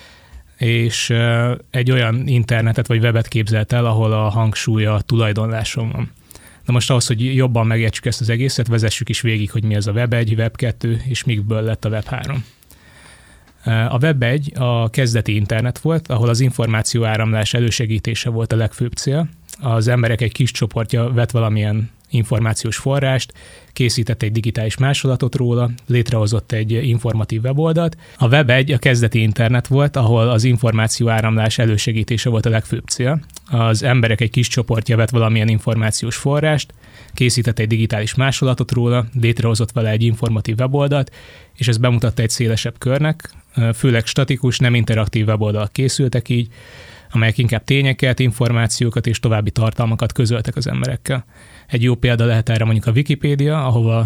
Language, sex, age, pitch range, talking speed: Hungarian, male, 20-39, 115-130 Hz, 155 wpm